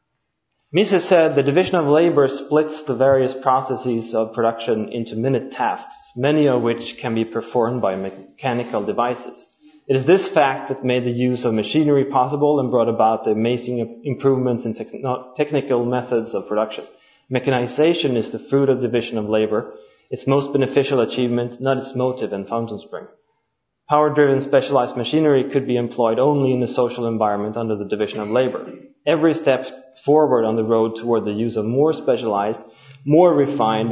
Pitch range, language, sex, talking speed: 115-150 Hz, English, male, 165 wpm